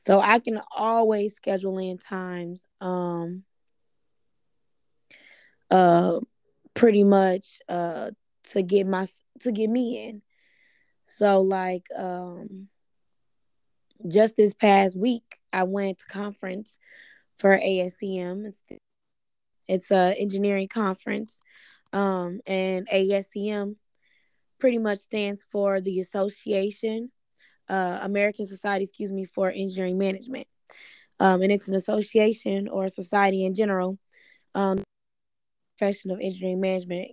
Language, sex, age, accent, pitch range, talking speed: English, female, 10-29, American, 185-210 Hz, 115 wpm